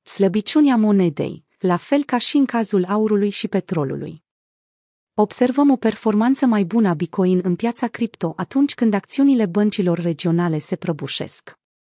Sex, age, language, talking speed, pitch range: female, 30-49, Romanian, 140 wpm, 175-225 Hz